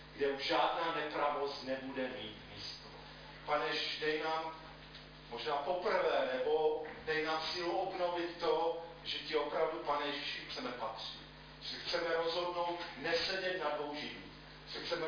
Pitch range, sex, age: 135-165 Hz, male, 40-59